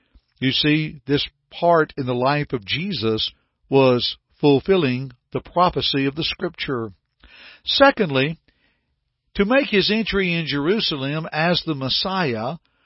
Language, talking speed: English, 120 wpm